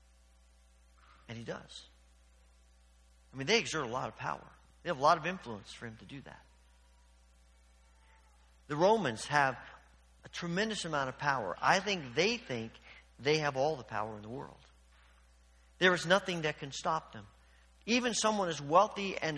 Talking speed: 165 wpm